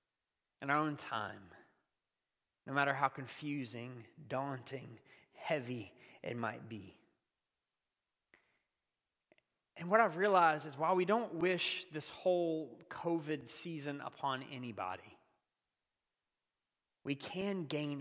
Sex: male